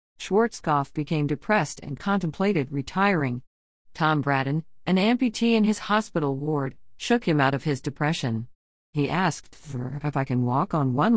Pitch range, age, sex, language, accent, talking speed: 145-195 Hz, 50-69, female, English, American, 150 wpm